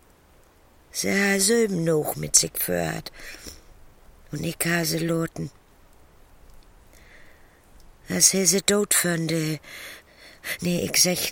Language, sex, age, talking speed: German, female, 60-79, 90 wpm